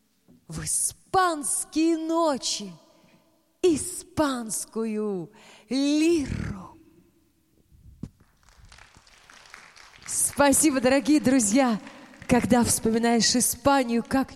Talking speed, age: 50 wpm, 30-49